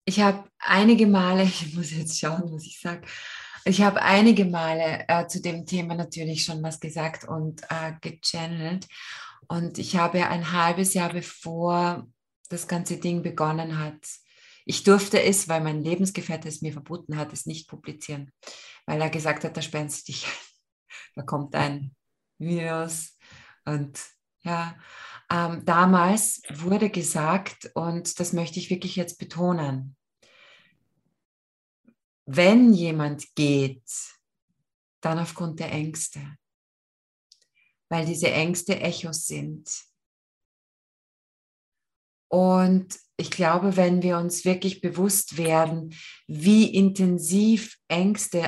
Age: 20-39